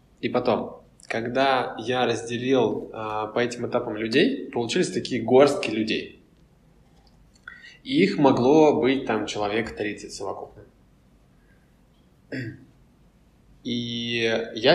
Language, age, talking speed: Russian, 20-39, 100 wpm